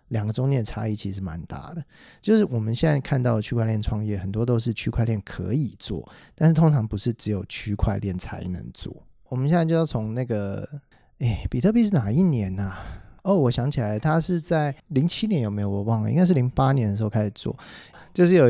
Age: 20-39